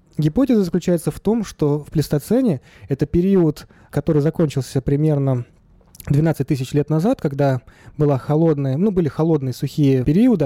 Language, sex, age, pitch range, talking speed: Russian, male, 20-39, 135-175 Hz, 140 wpm